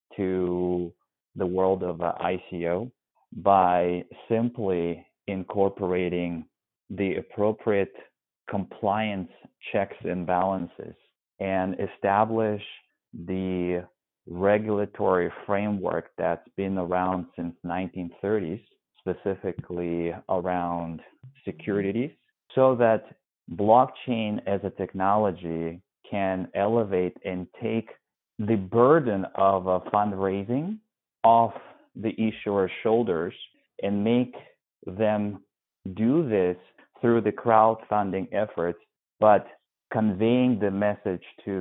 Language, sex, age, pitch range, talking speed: English, male, 30-49, 90-110 Hz, 90 wpm